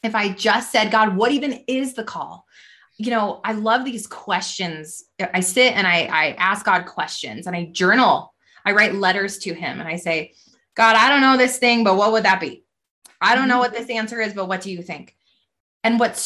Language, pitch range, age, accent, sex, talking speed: English, 185-225 Hz, 20-39, American, female, 220 wpm